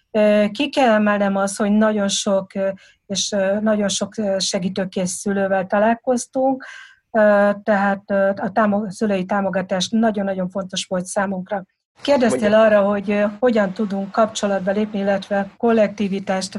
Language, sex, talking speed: Hungarian, female, 110 wpm